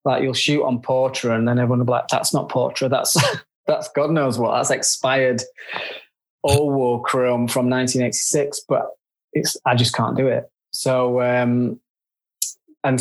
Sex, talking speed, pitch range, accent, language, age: male, 165 wpm, 120-135 Hz, British, English, 20-39